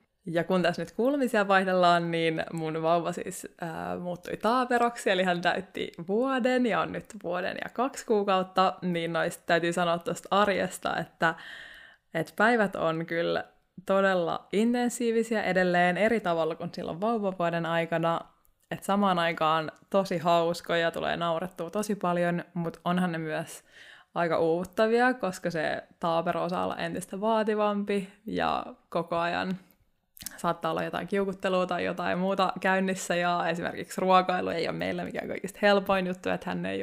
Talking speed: 150 wpm